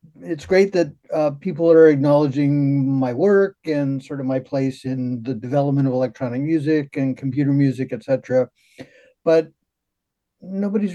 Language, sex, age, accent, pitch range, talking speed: English, male, 50-69, American, 135-170 Hz, 150 wpm